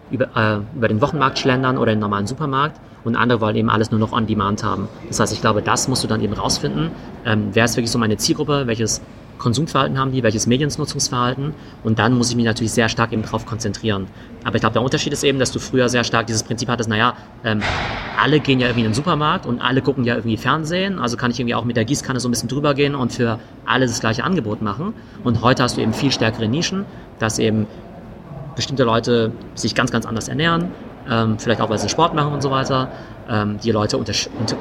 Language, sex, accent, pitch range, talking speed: German, male, German, 110-130 Hz, 230 wpm